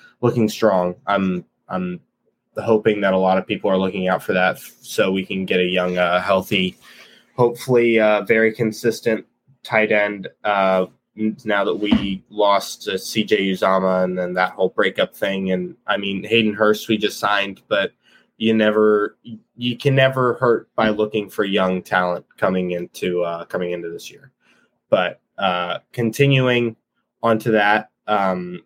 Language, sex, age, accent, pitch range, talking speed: English, male, 20-39, American, 95-110 Hz, 160 wpm